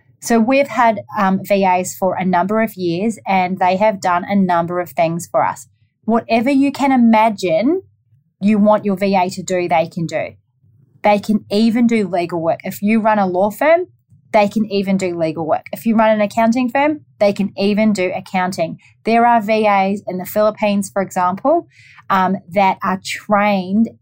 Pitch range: 170-215 Hz